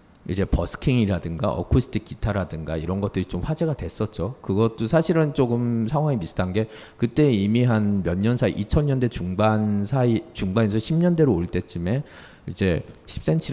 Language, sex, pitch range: Korean, male, 95-135 Hz